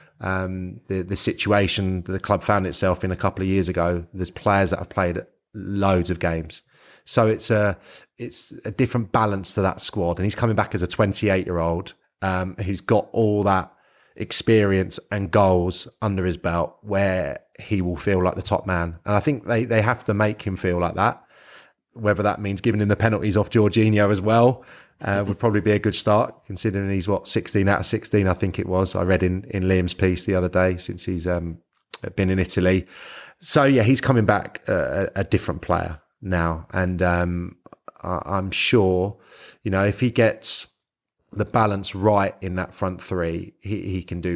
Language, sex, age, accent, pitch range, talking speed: English, male, 30-49, British, 90-105 Hz, 195 wpm